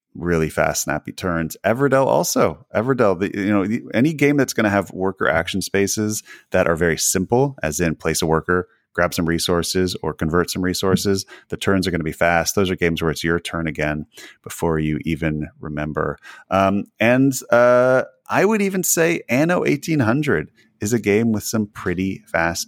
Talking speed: 185 wpm